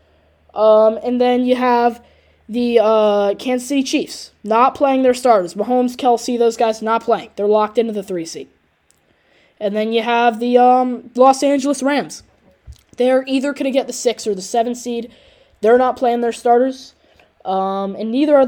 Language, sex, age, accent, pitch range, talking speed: English, female, 10-29, American, 205-250 Hz, 180 wpm